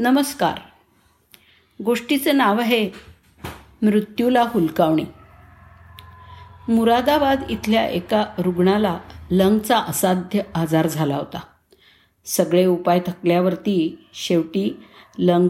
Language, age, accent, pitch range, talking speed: Marathi, 50-69, native, 175-225 Hz, 75 wpm